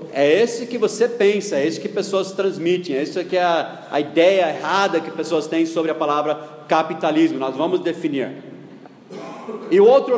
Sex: male